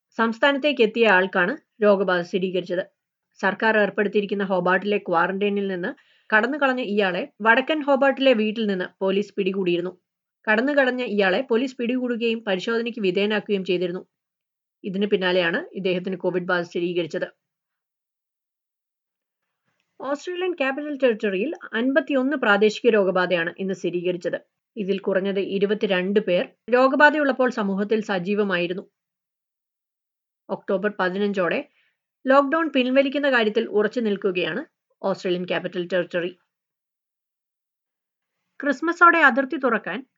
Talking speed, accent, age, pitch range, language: 90 wpm, native, 30-49, 185-255 Hz, Malayalam